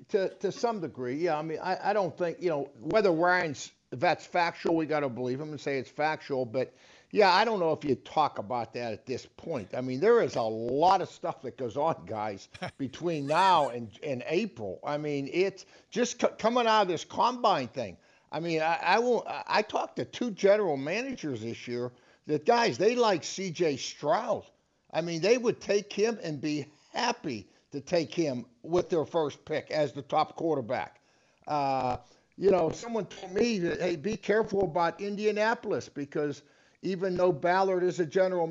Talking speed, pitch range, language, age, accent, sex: 200 wpm, 150-200 Hz, English, 60-79, American, male